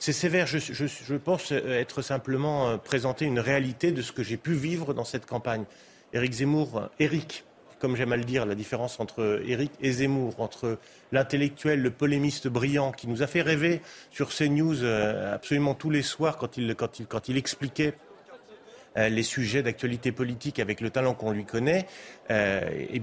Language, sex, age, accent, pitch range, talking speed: French, male, 30-49, French, 115-145 Hz, 175 wpm